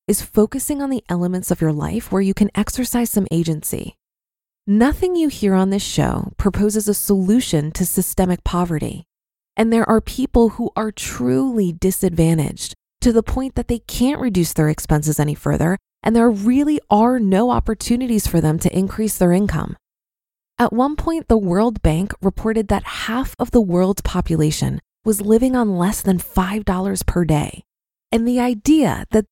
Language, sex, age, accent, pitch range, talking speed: English, female, 20-39, American, 180-240 Hz, 170 wpm